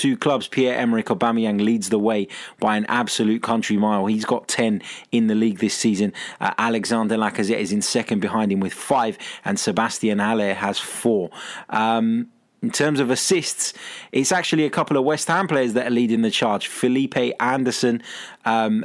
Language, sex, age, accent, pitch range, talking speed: English, male, 20-39, British, 110-145 Hz, 180 wpm